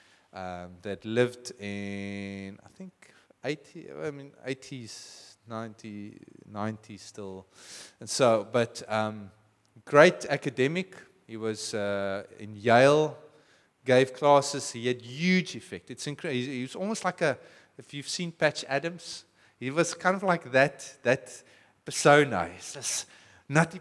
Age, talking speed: 30-49, 135 wpm